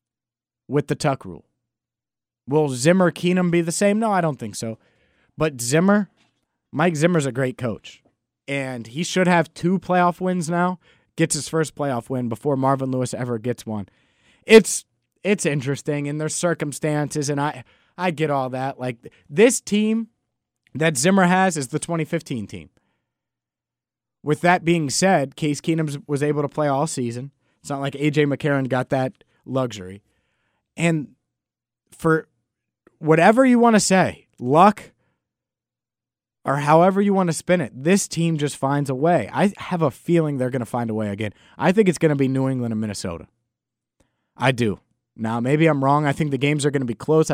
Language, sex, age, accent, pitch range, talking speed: English, male, 30-49, American, 125-165 Hz, 175 wpm